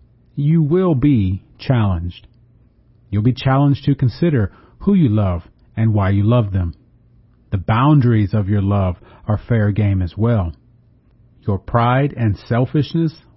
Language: English